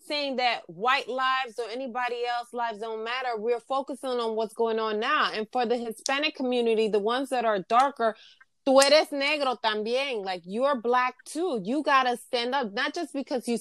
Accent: American